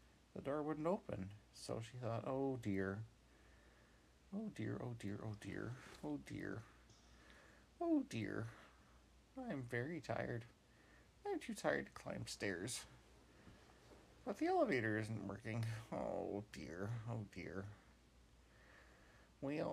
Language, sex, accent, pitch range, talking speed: English, male, American, 95-125 Hz, 115 wpm